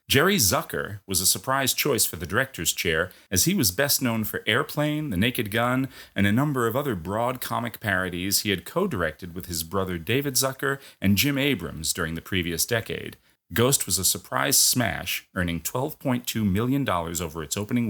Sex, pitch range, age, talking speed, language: male, 90-120 Hz, 40-59, 180 wpm, English